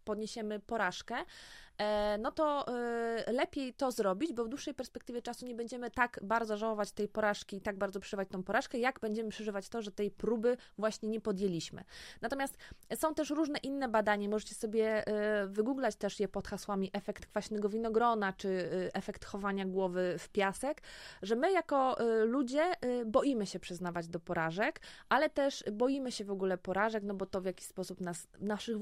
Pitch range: 195-235 Hz